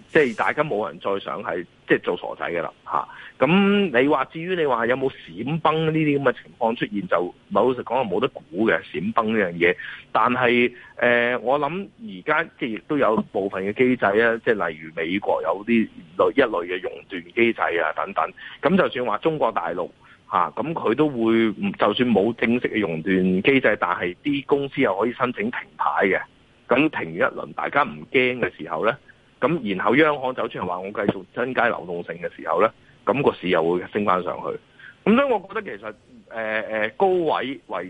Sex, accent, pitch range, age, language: male, native, 100-145 Hz, 30-49, Chinese